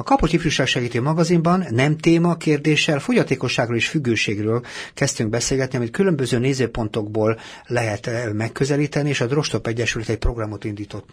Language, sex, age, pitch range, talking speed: Hungarian, male, 60-79, 110-140 Hz, 135 wpm